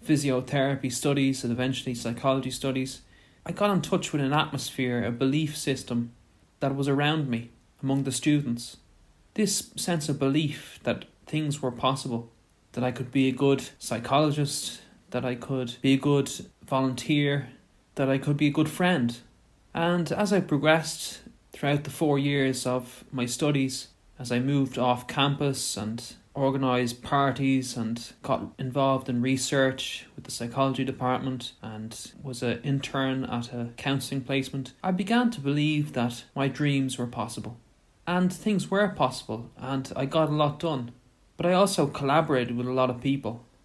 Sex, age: male, 20-39